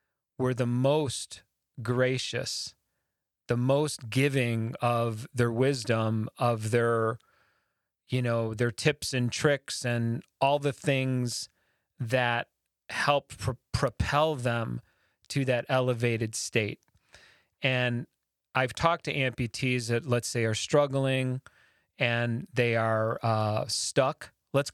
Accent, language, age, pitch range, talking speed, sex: American, English, 30-49, 120-145 Hz, 115 wpm, male